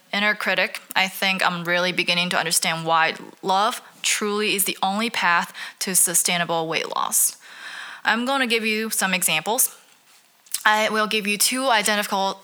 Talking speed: 160 wpm